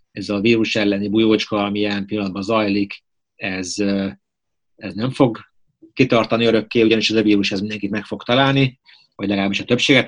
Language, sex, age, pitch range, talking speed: Hungarian, male, 30-49, 100-110 Hz, 165 wpm